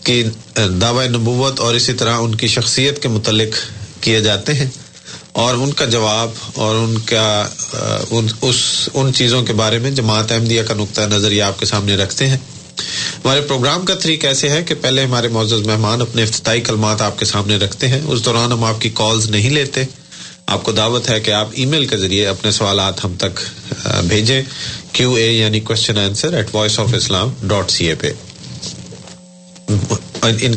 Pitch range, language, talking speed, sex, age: 105-125 Hz, Urdu, 175 wpm, male, 40-59